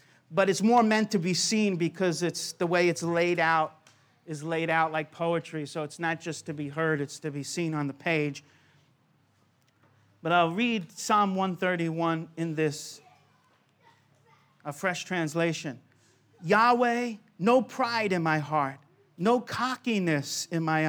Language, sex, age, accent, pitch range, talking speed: English, male, 40-59, American, 150-205 Hz, 150 wpm